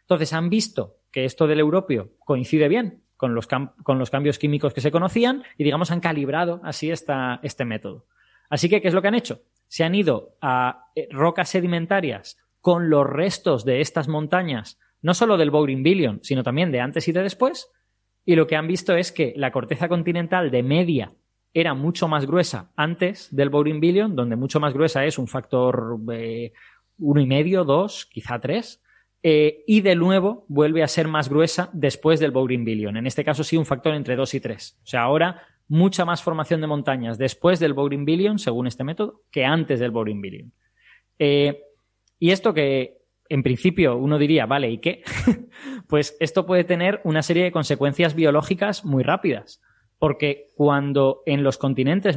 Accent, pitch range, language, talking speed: Spanish, 135-175 Hz, Spanish, 185 wpm